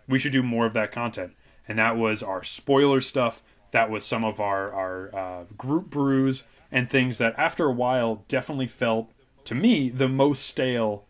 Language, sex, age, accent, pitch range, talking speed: English, male, 20-39, American, 110-130 Hz, 190 wpm